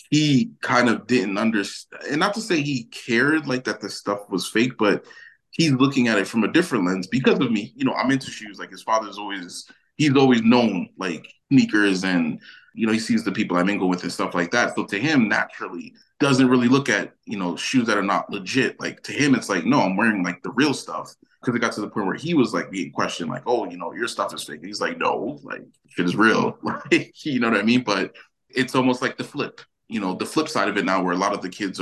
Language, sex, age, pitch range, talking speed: English, male, 20-39, 100-130 Hz, 260 wpm